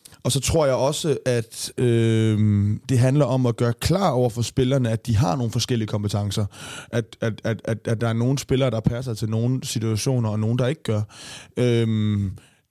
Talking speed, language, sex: 200 wpm, Danish, male